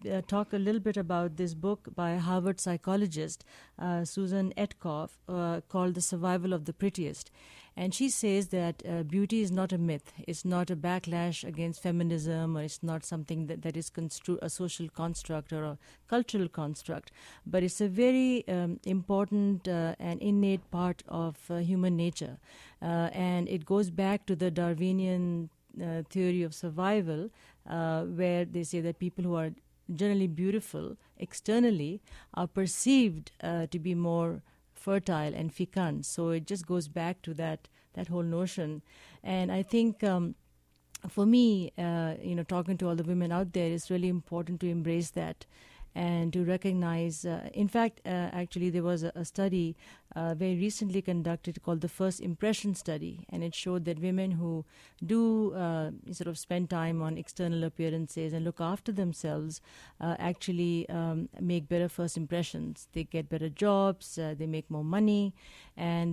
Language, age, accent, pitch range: English, 50-69, Indian, 165-190 Hz